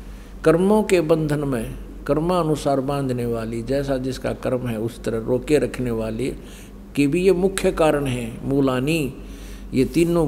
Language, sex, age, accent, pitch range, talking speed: Hindi, male, 50-69, native, 125-165 Hz, 145 wpm